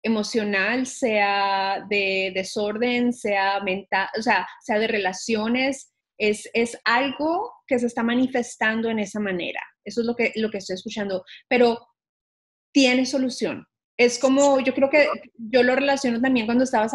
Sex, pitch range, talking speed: female, 215-260 Hz, 150 wpm